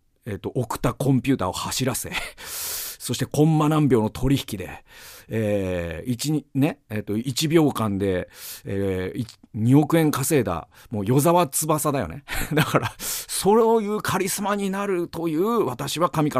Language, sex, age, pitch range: Japanese, male, 40-59, 125-215 Hz